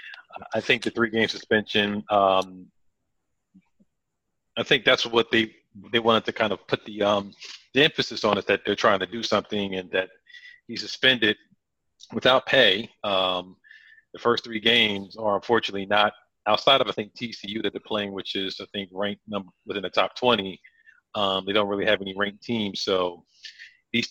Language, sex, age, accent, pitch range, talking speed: English, male, 40-59, American, 100-115 Hz, 175 wpm